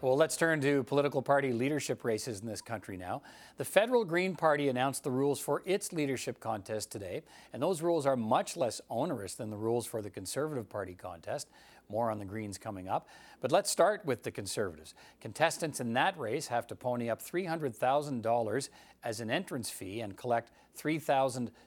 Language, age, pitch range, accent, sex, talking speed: English, 50-69, 115-150 Hz, American, male, 185 wpm